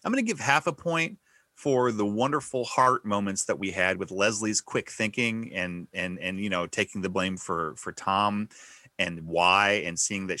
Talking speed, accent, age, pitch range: 200 wpm, American, 30-49, 95-130 Hz